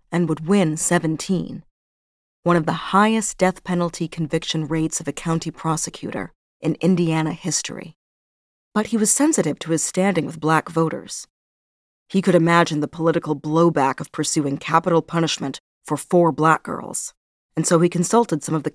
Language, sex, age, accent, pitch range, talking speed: English, female, 40-59, American, 155-185 Hz, 160 wpm